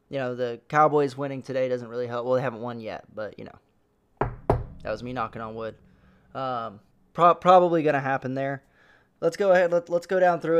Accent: American